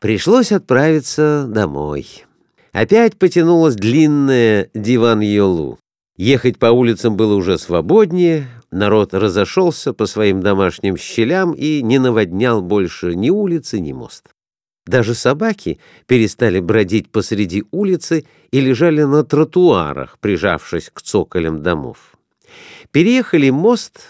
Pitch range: 105-170 Hz